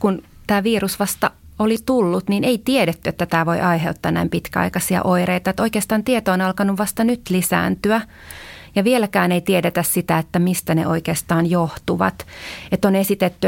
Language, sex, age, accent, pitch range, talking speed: Finnish, female, 30-49, native, 165-205 Hz, 165 wpm